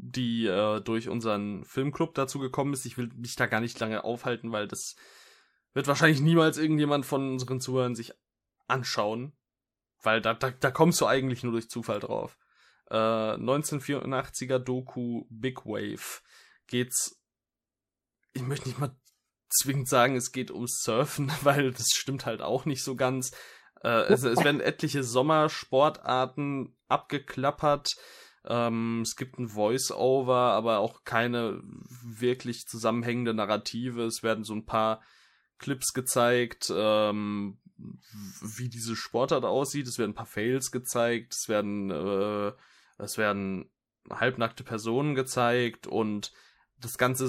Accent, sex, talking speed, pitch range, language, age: German, male, 135 wpm, 115-135 Hz, German, 20-39